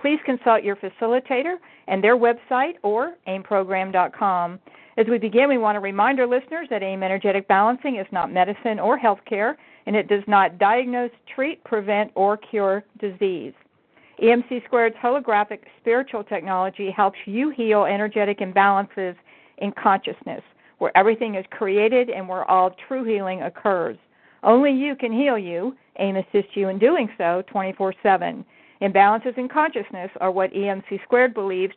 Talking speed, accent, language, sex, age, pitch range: 150 wpm, American, English, female, 50-69, 195-245 Hz